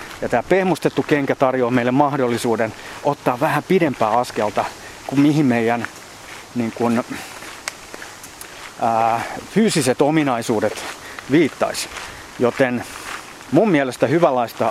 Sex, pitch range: male, 115-155 Hz